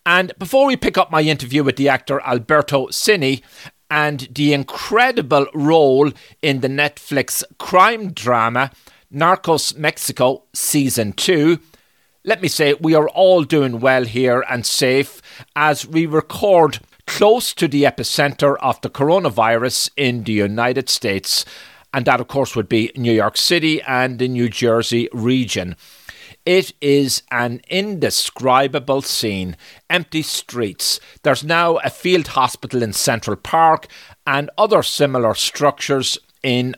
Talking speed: 135 wpm